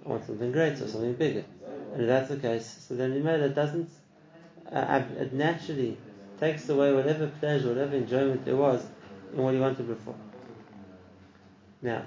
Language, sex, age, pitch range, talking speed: English, male, 30-49, 115-145 Hz, 175 wpm